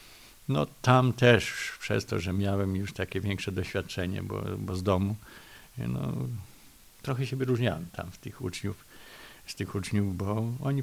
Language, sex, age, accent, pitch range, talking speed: English, male, 50-69, Polish, 95-115 Hz, 155 wpm